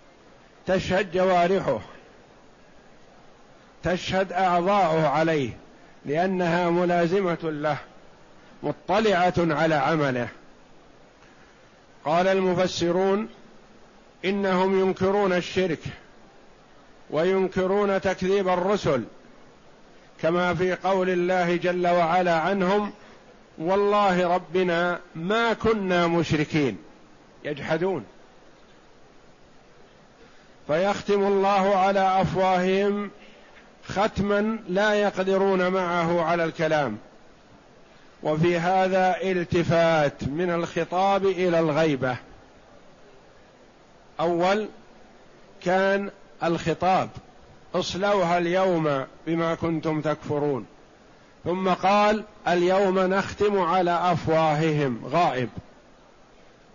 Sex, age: male, 50-69